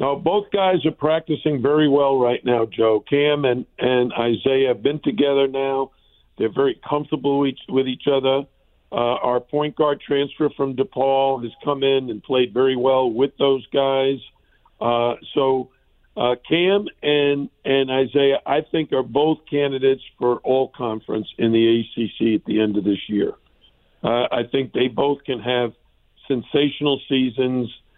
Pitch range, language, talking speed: 125-145 Hz, English, 165 wpm